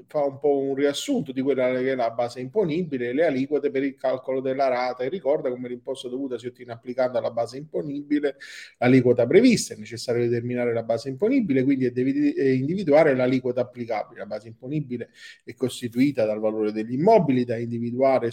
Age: 30-49